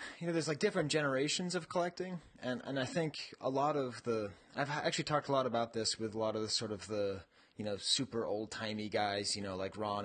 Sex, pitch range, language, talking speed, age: male, 105-135 Hz, English, 245 wpm, 30-49